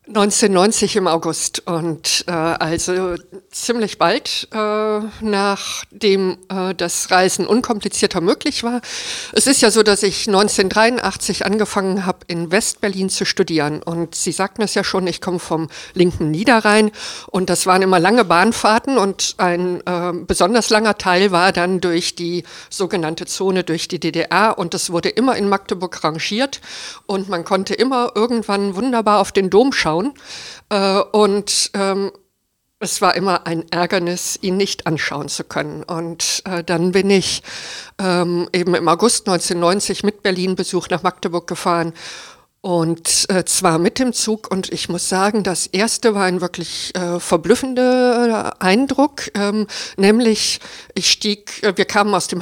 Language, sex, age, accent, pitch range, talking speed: German, female, 50-69, German, 175-210 Hz, 150 wpm